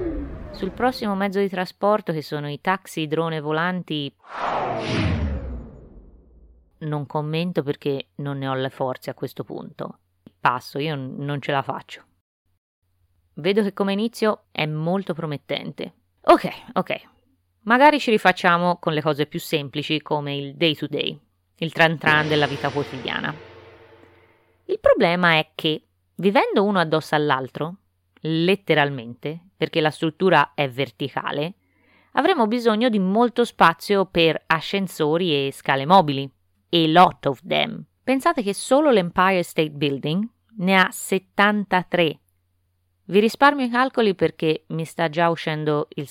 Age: 20-39